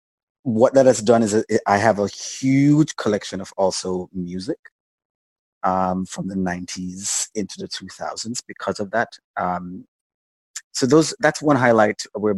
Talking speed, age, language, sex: 145 wpm, 30-49, English, male